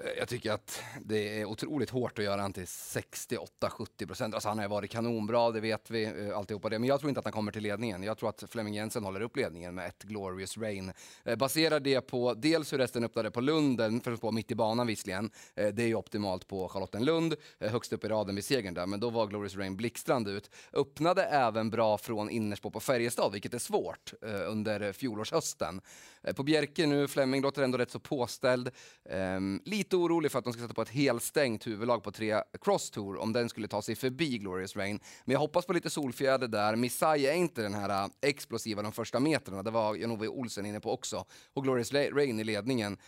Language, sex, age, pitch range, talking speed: Swedish, male, 30-49, 105-130 Hz, 205 wpm